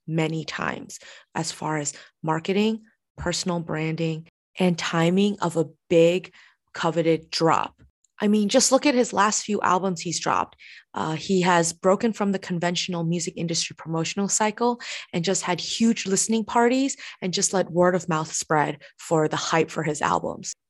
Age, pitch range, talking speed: 20-39, 165-200 Hz, 160 wpm